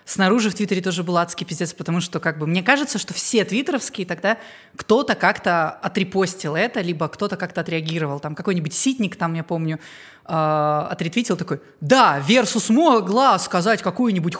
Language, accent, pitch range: Russian, native, 175-210 Hz